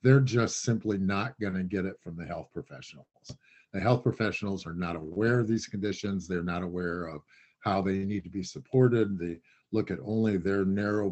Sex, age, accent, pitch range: male, 50-69, American, 95-110 Hz